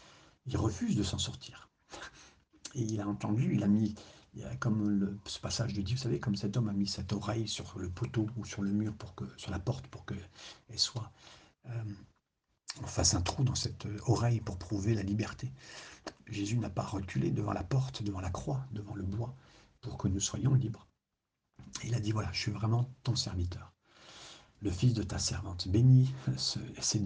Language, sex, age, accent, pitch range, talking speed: French, male, 60-79, French, 100-115 Hz, 200 wpm